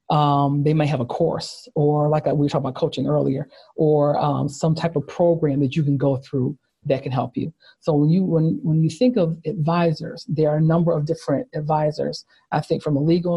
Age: 40-59